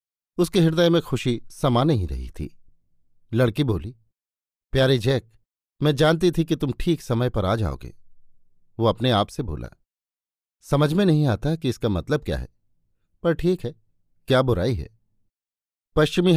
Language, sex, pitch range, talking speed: Hindi, male, 110-140 Hz, 160 wpm